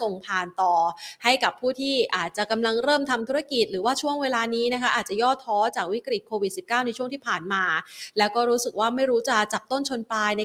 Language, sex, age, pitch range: Thai, female, 20-39, 210-260 Hz